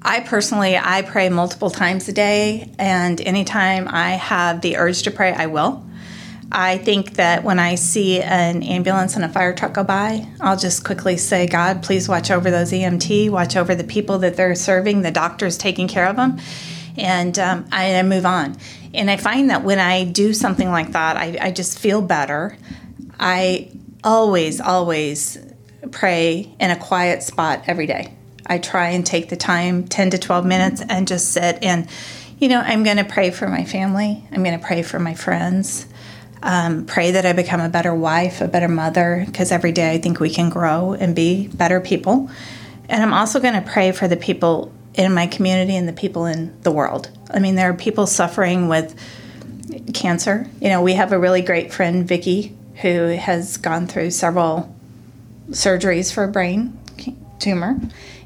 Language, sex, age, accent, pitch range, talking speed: English, female, 30-49, American, 175-195 Hz, 190 wpm